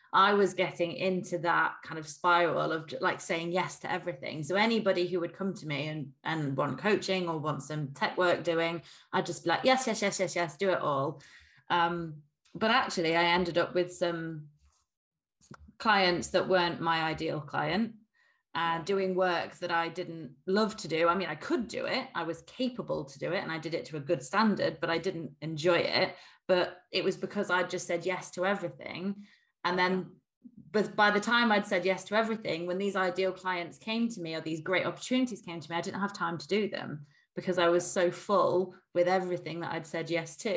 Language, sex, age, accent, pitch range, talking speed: English, female, 20-39, British, 165-190 Hz, 215 wpm